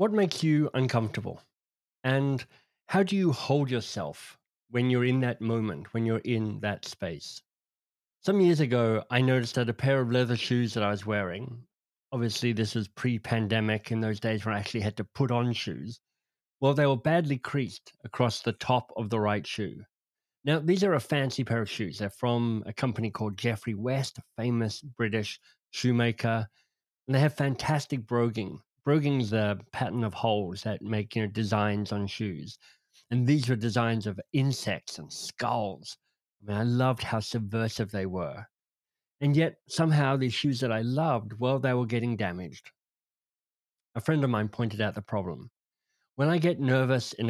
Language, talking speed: English, 180 wpm